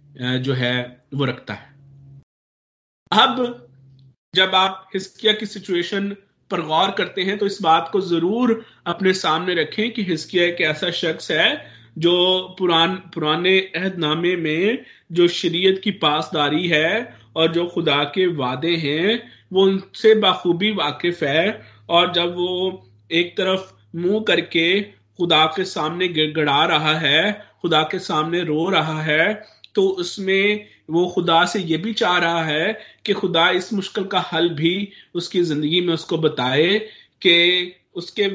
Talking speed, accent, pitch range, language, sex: 125 wpm, native, 155-190 Hz, Hindi, male